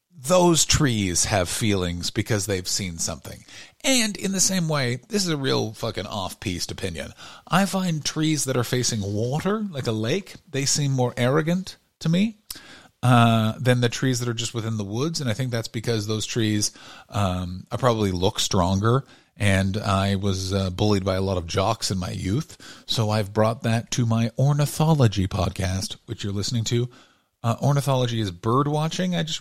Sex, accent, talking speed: male, American, 180 wpm